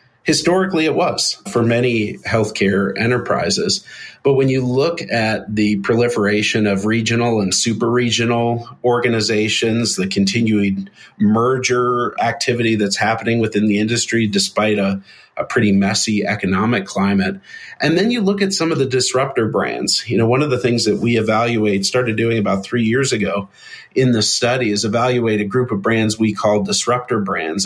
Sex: male